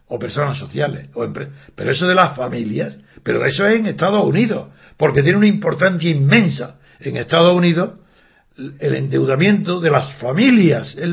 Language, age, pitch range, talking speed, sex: Spanish, 60-79, 145-190 Hz, 160 wpm, male